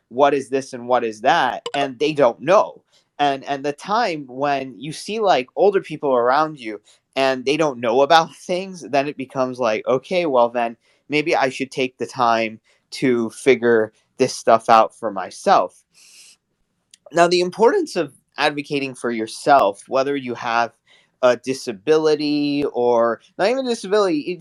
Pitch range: 120-160 Hz